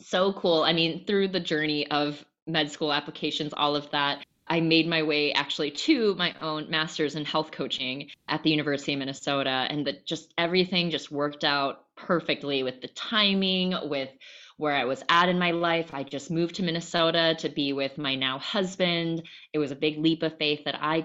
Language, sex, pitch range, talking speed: English, female, 145-180 Hz, 200 wpm